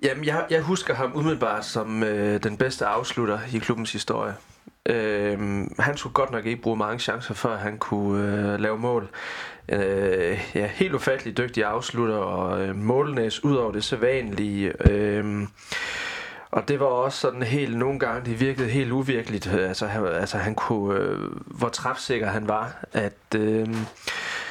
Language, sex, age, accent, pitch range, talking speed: Danish, male, 30-49, native, 105-125 Hz, 165 wpm